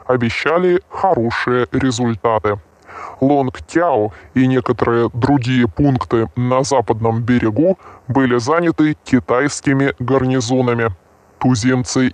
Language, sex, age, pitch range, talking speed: Russian, female, 20-39, 120-150 Hz, 80 wpm